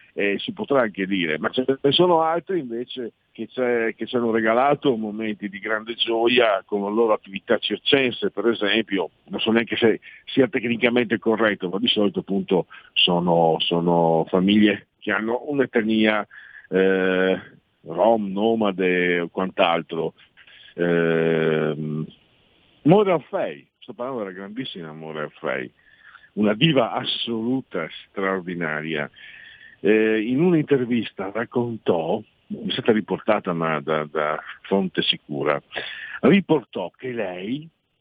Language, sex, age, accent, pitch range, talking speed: Italian, male, 50-69, native, 90-125 Hz, 125 wpm